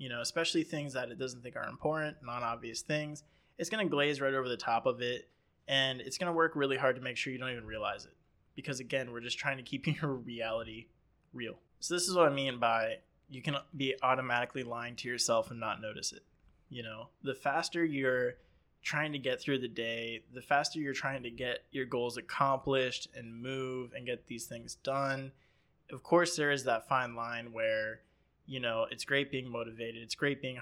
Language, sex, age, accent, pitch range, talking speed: English, male, 20-39, American, 120-140 Hz, 210 wpm